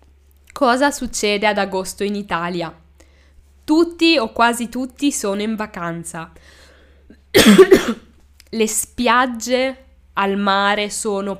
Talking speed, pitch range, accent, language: 95 wpm, 180-235 Hz, native, Italian